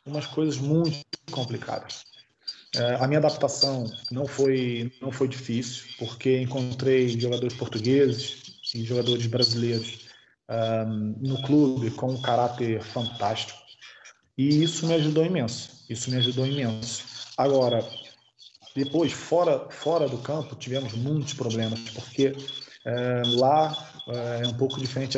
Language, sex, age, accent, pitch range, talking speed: Portuguese, male, 20-39, Brazilian, 120-145 Hz, 125 wpm